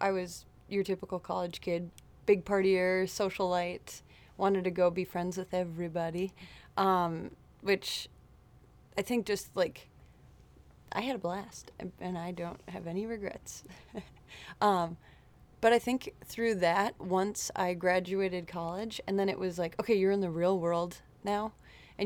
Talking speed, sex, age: 150 wpm, female, 30-49